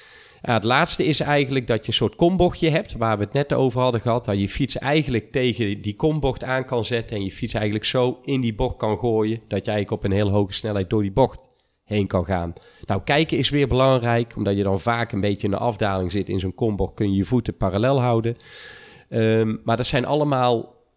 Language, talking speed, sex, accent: Dutch, 230 wpm, male, Dutch